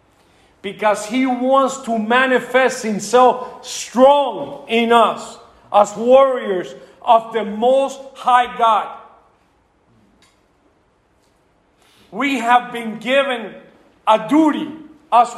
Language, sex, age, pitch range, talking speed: English, male, 50-69, 225-280 Hz, 90 wpm